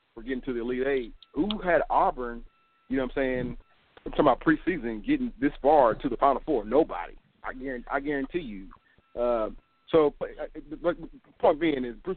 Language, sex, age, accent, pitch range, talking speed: English, male, 40-59, American, 110-135 Hz, 185 wpm